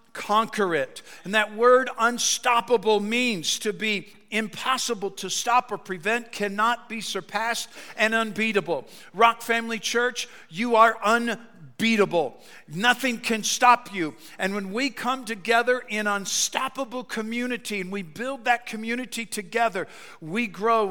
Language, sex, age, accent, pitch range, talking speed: English, male, 50-69, American, 195-240 Hz, 130 wpm